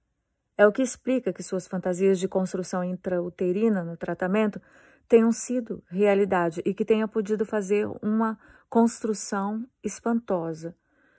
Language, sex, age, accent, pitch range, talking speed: English, female, 30-49, Brazilian, 180-225 Hz, 125 wpm